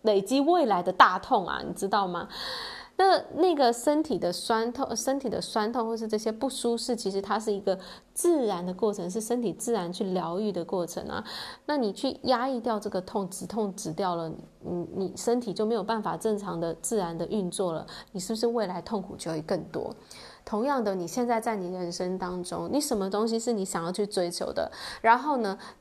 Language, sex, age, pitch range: Chinese, female, 20-39, 185-240 Hz